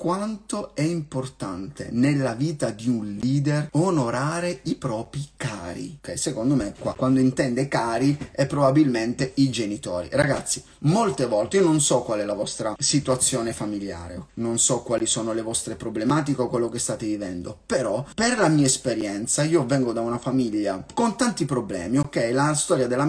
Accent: native